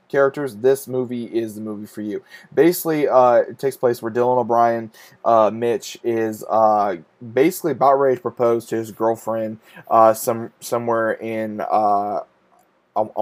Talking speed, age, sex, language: 150 wpm, 20-39, male, English